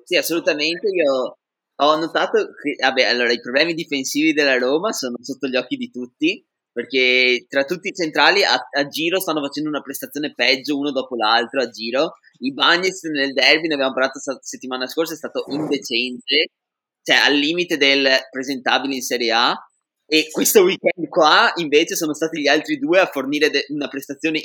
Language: Italian